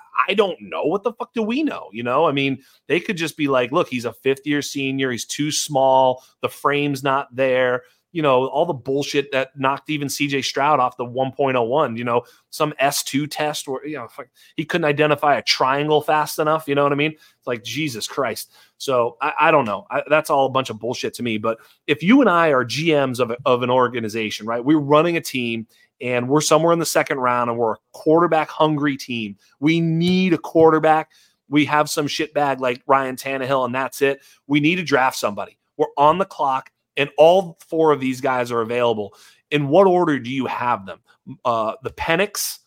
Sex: male